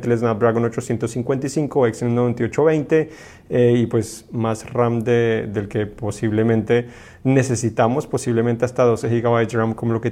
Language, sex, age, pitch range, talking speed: Spanish, male, 30-49, 120-140 Hz, 140 wpm